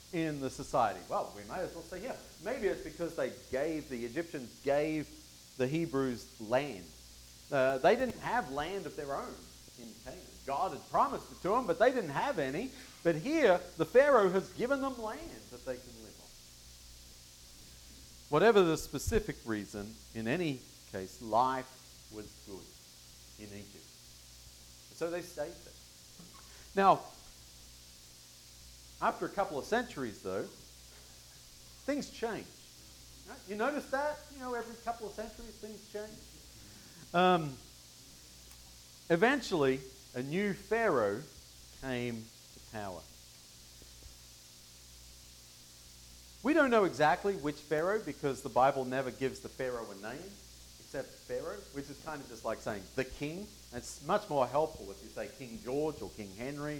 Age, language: 40-59, English